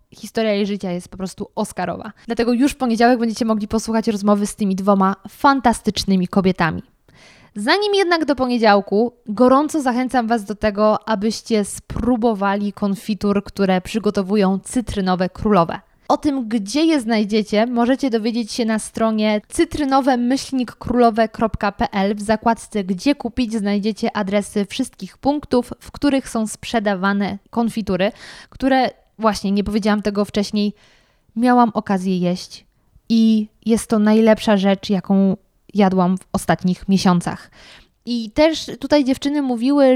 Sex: female